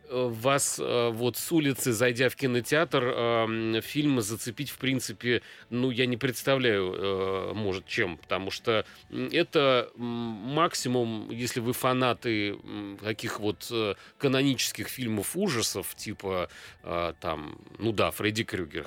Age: 30-49